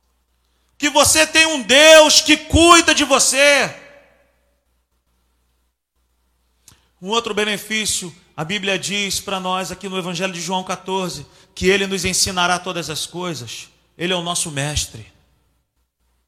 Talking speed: 130 wpm